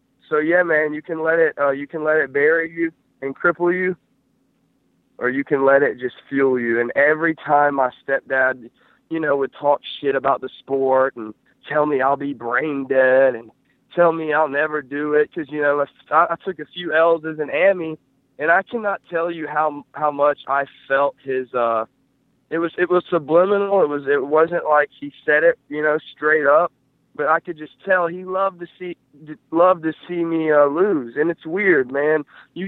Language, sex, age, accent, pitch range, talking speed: English, male, 20-39, American, 135-165 Hz, 210 wpm